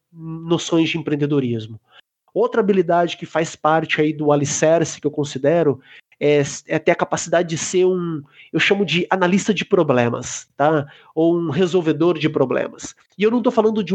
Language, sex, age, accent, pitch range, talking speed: Portuguese, male, 30-49, Brazilian, 155-210 Hz, 170 wpm